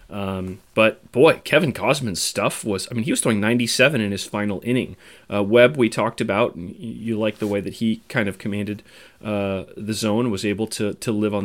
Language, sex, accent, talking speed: English, male, American, 215 wpm